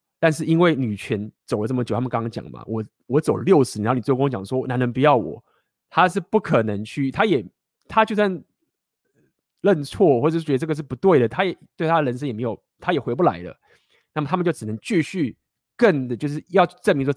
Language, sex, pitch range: Chinese, male, 115-160 Hz